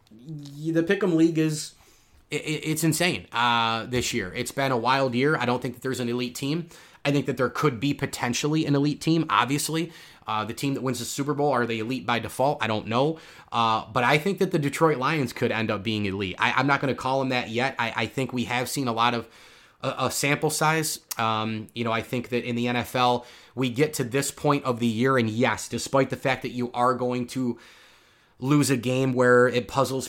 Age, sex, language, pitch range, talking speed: 30-49, male, English, 115-135 Hz, 235 wpm